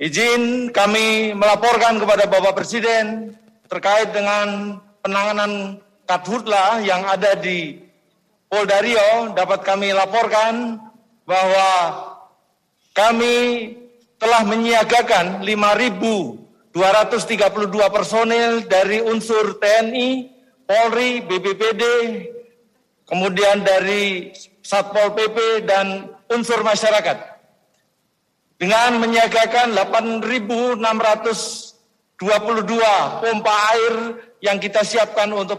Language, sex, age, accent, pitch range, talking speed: Indonesian, male, 50-69, native, 200-235 Hz, 75 wpm